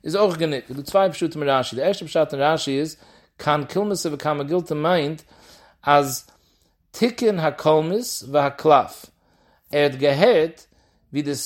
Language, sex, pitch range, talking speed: English, male, 130-170 Hz, 105 wpm